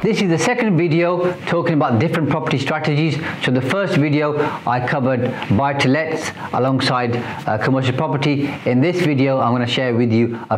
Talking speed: 170 wpm